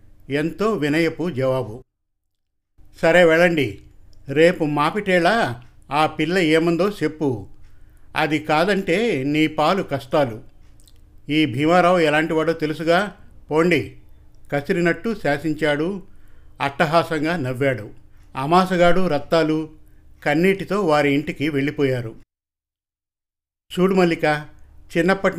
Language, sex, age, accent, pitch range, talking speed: Telugu, male, 50-69, native, 125-170 Hz, 80 wpm